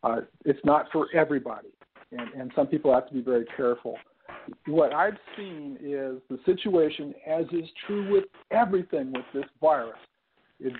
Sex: male